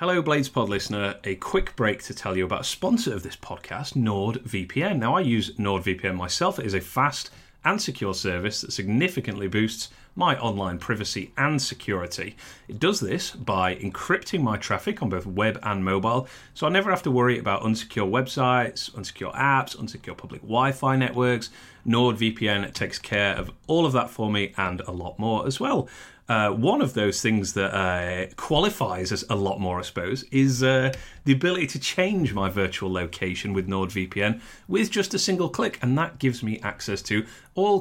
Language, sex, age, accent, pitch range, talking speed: English, male, 30-49, British, 95-135 Hz, 185 wpm